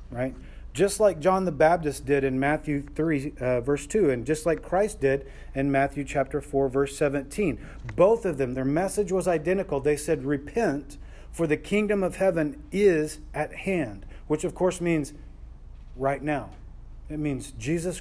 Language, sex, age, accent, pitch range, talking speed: English, male, 40-59, American, 130-160 Hz, 170 wpm